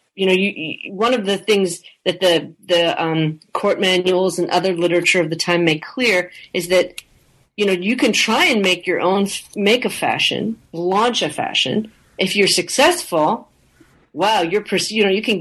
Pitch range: 165-200 Hz